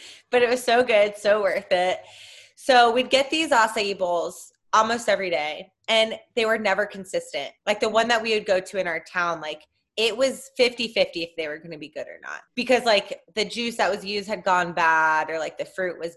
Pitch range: 195-280 Hz